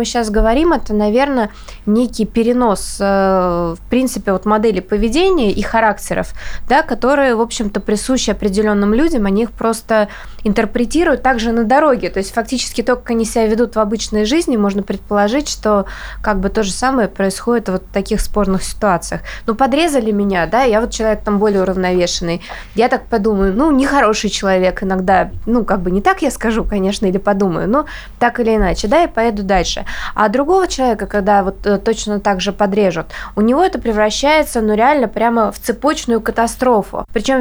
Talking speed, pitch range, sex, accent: 175 wpm, 205-250 Hz, female, native